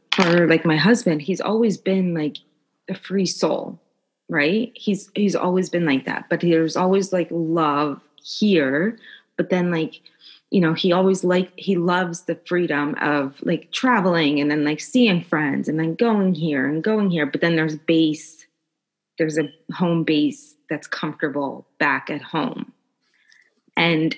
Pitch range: 160-195 Hz